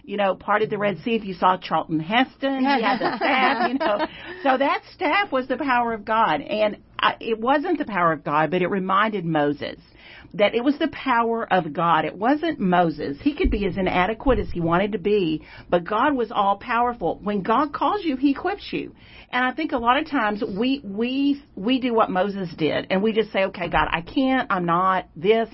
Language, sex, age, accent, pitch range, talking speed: English, female, 50-69, American, 180-240 Hz, 225 wpm